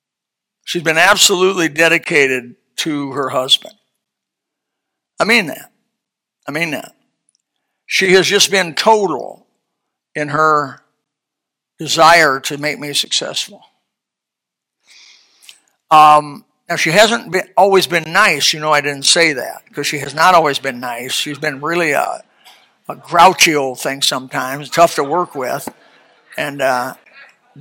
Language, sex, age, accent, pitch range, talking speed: English, male, 60-79, American, 155-215 Hz, 135 wpm